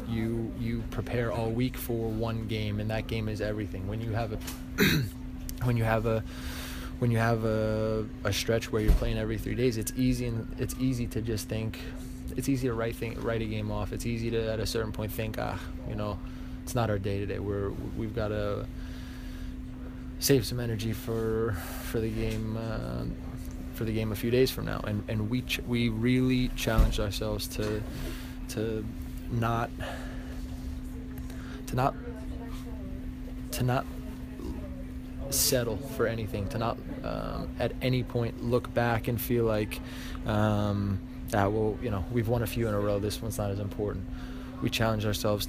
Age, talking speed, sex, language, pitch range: 20-39, 180 wpm, male, English, 85-115 Hz